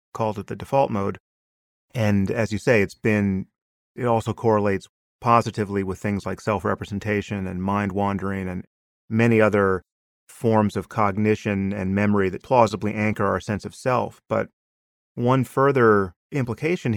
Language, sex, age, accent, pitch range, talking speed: English, male, 30-49, American, 95-115 Hz, 150 wpm